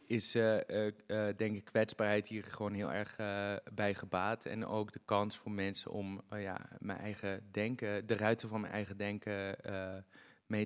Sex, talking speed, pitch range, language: male, 185 wpm, 100-115 Hz, Dutch